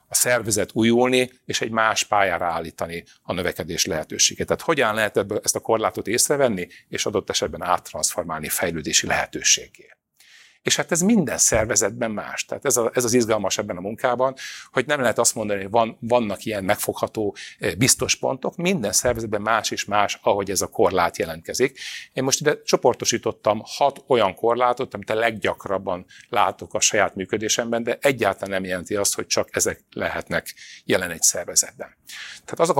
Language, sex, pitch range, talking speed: Hungarian, male, 105-130 Hz, 160 wpm